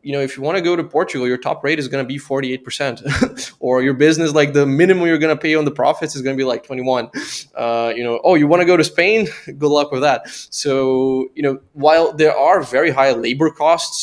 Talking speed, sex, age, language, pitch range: 255 wpm, male, 20-39, English, 115-145 Hz